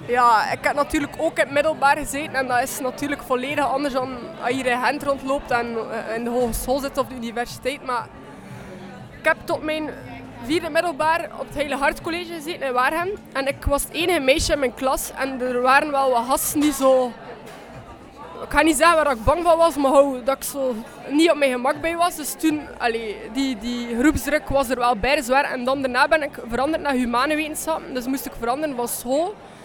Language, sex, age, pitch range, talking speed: Dutch, female, 20-39, 255-305 Hz, 215 wpm